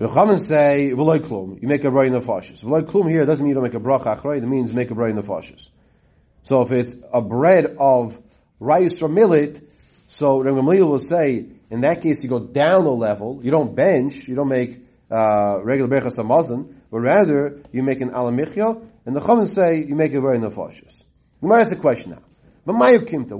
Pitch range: 125-170 Hz